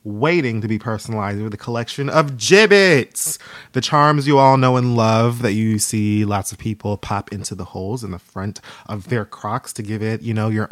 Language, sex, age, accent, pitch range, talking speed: English, male, 20-39, American, 100-130 Hz, 215 wpm